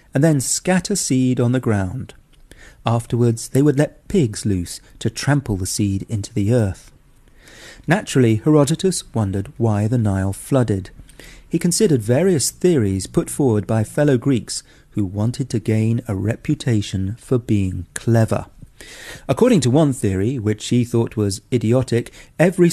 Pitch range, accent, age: 105-140 Hz, British, 40-59